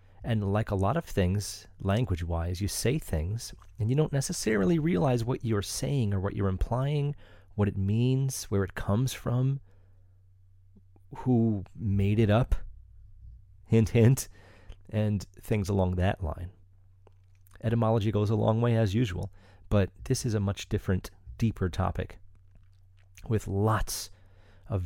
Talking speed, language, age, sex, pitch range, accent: 140 wpm, English, 30-49, male, 95-115 Hz, American